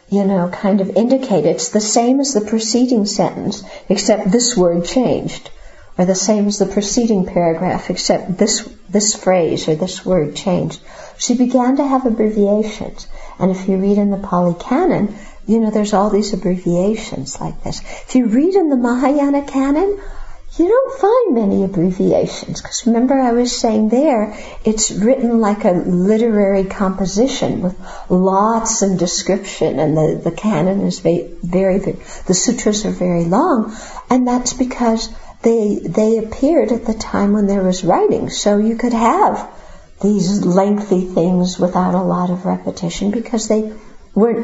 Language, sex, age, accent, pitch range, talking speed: English, female, 60-79, American, 190-235 Hz, 160 wpm